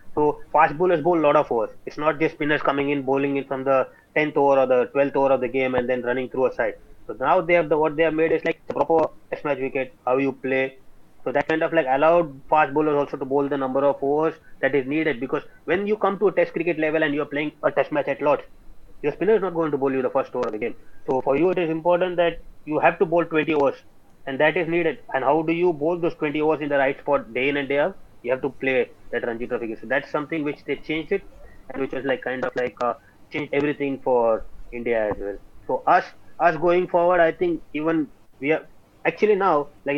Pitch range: 130-165 Hz